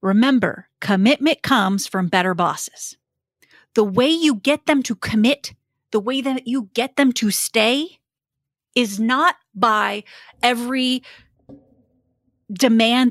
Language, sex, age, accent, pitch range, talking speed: English, female, 30-49, American, 195-270 Hz, 120 wpm